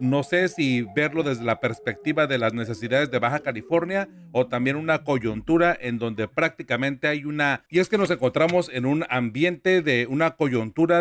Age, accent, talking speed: 40-59, Mexican, 180 wpm